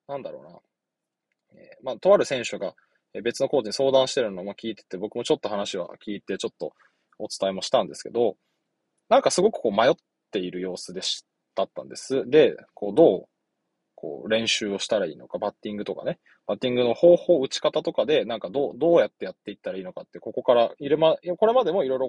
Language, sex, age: Japanese, male, 20-39